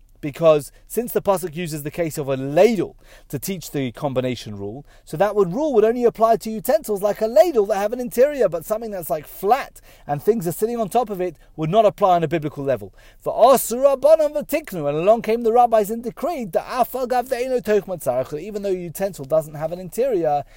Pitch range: 150-220 Hz